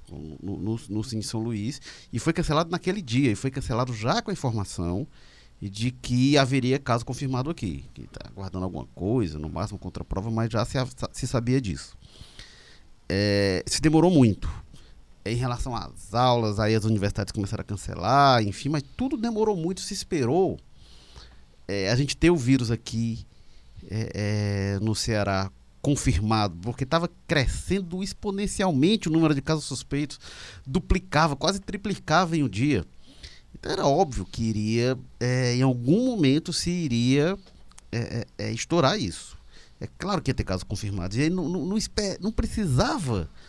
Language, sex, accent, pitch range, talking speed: Portuguese, male, Brazilian, 105-160 Hz, 155 wpm